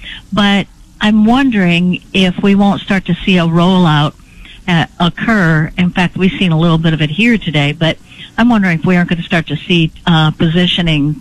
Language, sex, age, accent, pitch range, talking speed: English, female, 60-79, American, 160-190 Hz, 195 wpm